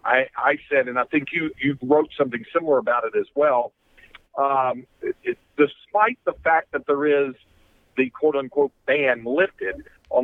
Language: English